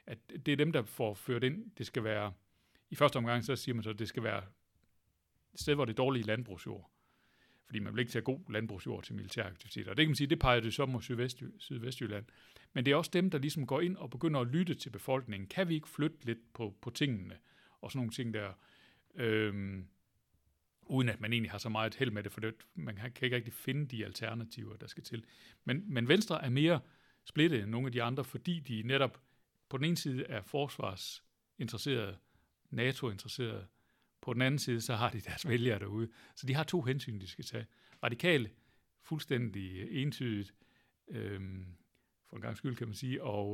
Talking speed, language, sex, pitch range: 210 wpm, Danish, male, 110-140 Hz